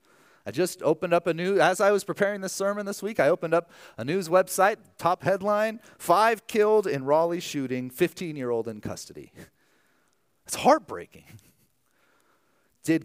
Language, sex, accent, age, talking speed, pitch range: English, male, American, 40-59, 150 wpm, 125-185 Hz